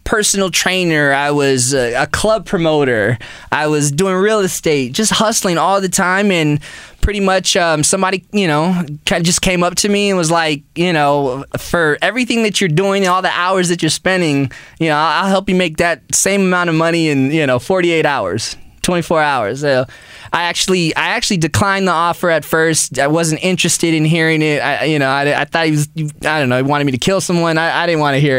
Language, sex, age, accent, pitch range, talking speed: English, male, 20-39, American, 145-185 Hz, 230 wpm